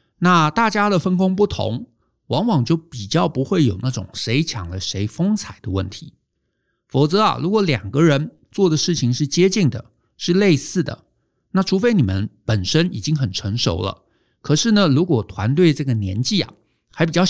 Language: Chinese